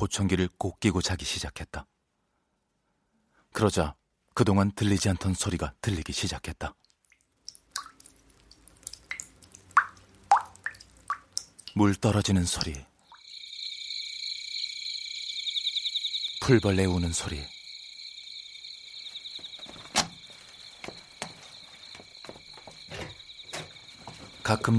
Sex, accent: male, native